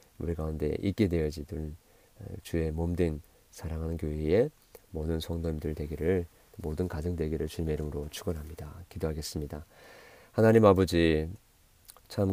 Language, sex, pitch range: Korean, male, 85-105 Hz